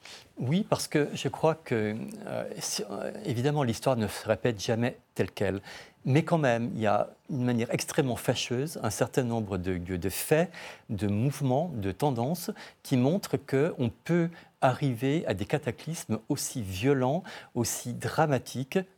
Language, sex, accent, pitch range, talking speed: French, male, French, 110-145 Hz, 150 wpm